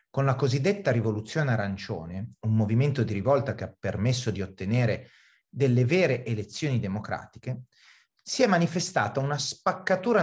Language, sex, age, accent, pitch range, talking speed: Italian, male, 30-49, native, 105-145 Hz, 135 wpm